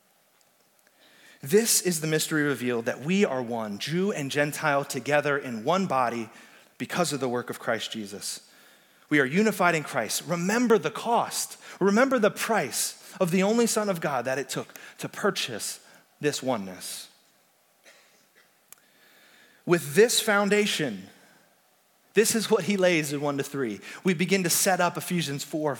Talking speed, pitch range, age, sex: 155 wpm, 140-205 Hz, 30-49, male